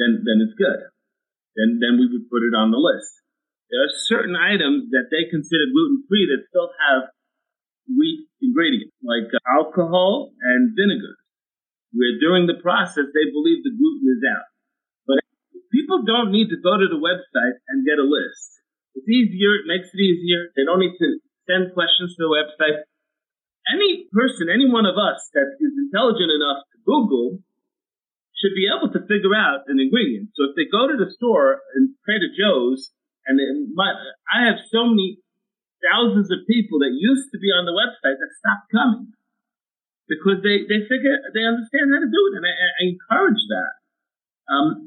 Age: 40-59